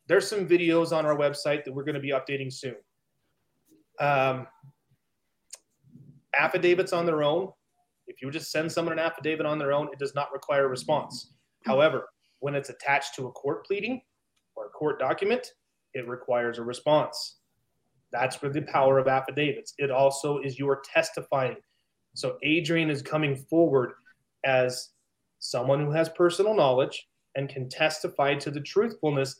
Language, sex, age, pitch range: English, male, 30-49, 135-165 Hz